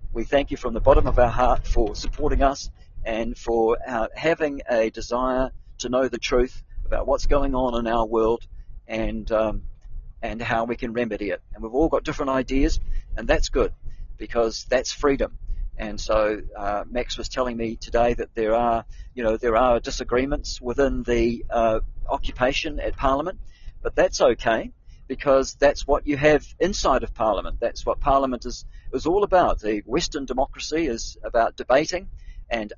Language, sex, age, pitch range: English, male, 50-69, 110-135 Hz